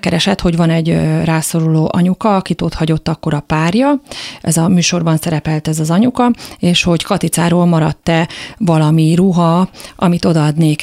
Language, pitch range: Hungarian, 165-190 Hz